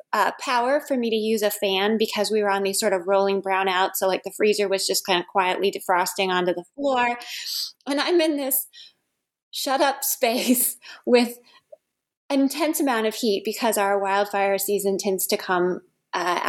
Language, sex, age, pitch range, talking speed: English, female, 20-39, 200-275 Hz, 185 wpm